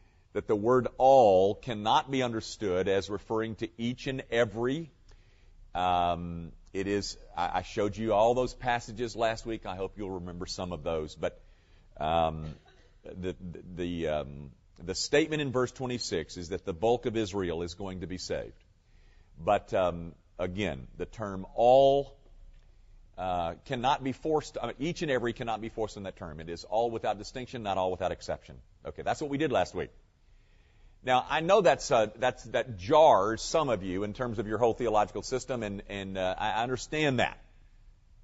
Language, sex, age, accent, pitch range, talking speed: English, male, 50-69, American, 95-135 Hz, 175 wpm